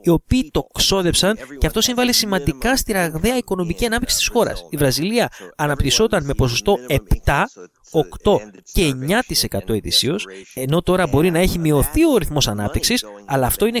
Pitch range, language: 125-195 Hz, English